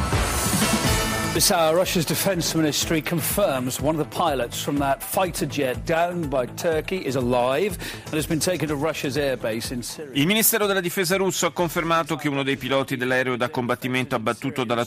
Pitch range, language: 120-160 Hz, Italian